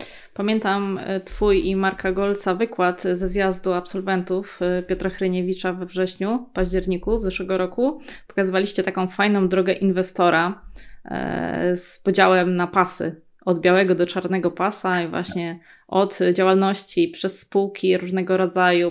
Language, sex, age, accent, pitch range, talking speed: Polish, female, 20-39, native, 180-195 Hz, 125 wpm